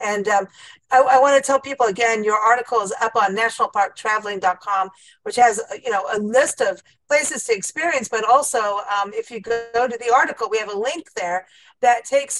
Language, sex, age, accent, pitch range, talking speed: English, female, 50-69, American, 225-290 Hz, 200 wpm